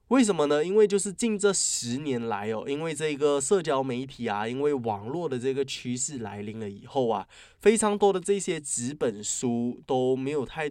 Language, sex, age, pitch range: Chinese, male, 20-39, 115-170 Hz